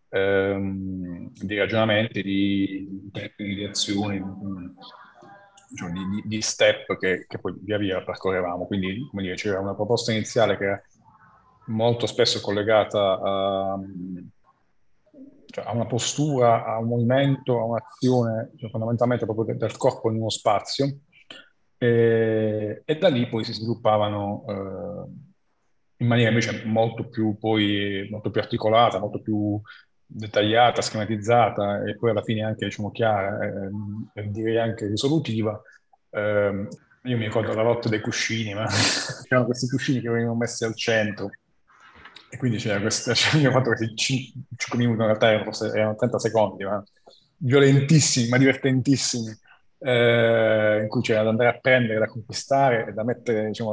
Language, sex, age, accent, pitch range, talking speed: Italian, male, 30-49, native, 105-120 Hz, 145 wpm